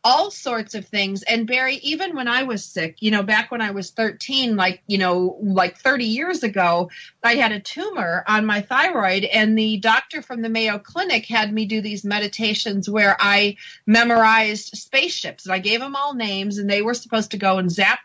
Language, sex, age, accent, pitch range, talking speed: English, female, 40-59, American, 200-245 Hz, 205 wpm